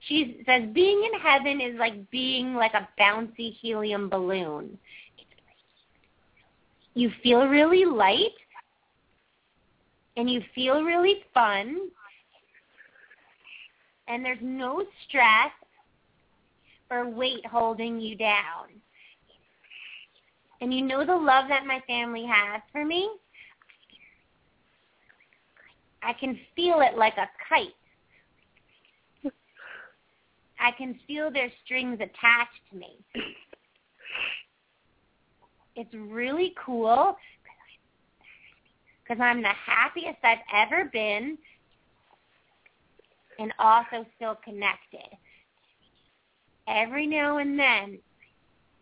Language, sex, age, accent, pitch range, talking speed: English, female, 30-49, American, 215-280 Hz, 90 wpm